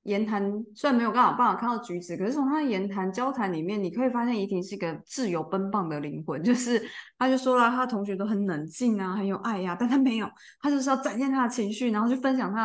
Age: 20-39